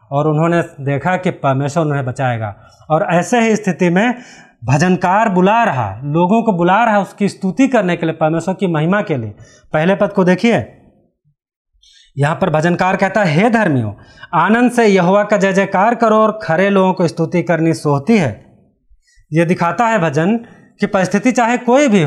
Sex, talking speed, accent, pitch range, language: male, 175 wpm, native, 145-210 Hz, Hindi